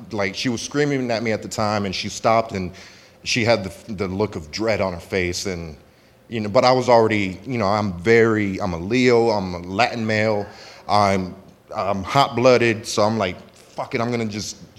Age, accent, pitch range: 30-49, American, 95-120 Hz